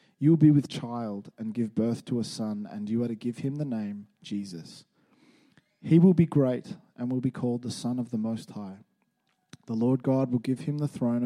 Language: English